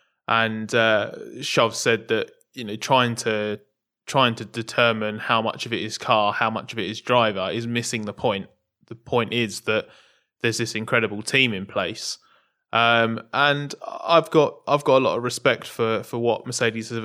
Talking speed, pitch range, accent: 185 wpm, 105-120 Hz, British